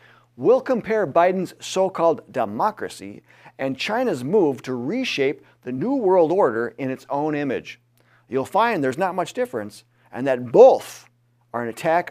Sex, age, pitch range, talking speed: male, 40-59, 120-155 Hz, 150 wpm